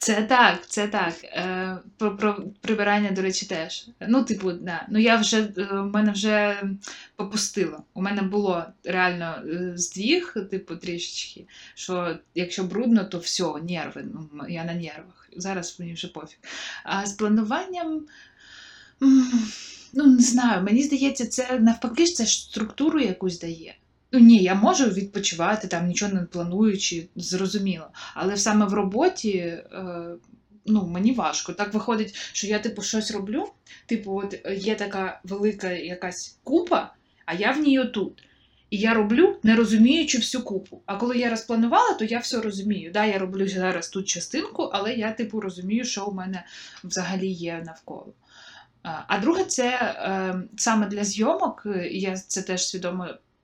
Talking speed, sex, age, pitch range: 155 wpm, female, 20-39, 185-230 Hz